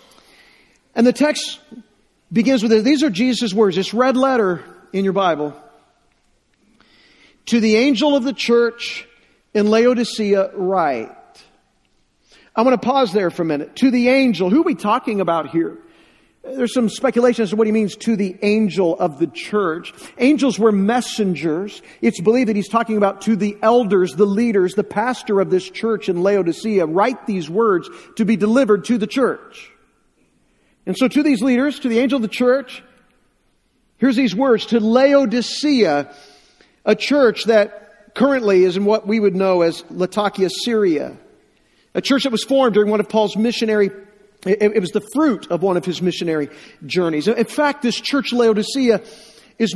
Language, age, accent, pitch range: English, 50-69, American, 195-245 Hz